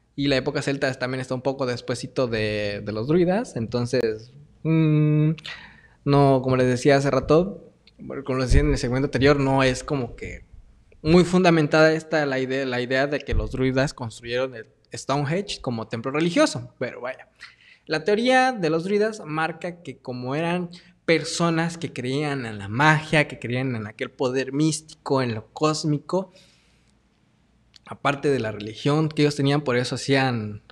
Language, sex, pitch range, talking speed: Spanish, male, 130-160 Hz, 160 wpm